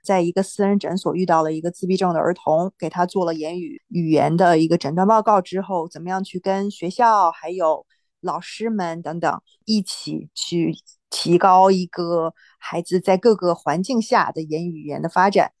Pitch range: 175-215 Hz